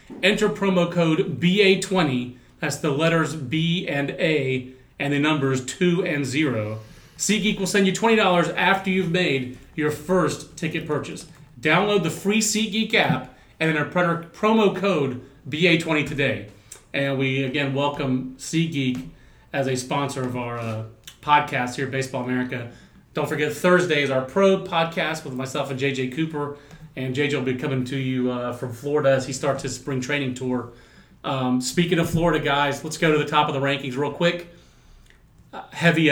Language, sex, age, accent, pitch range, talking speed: English, male, 30-49, American, 135-170 Hz, 170 wpm